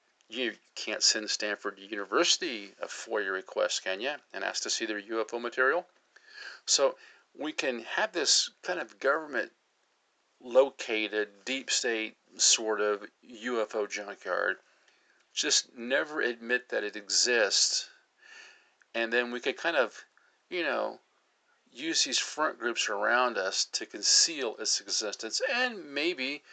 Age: 40-59